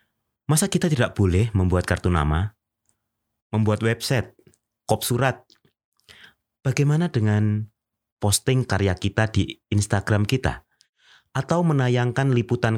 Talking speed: 105 wpm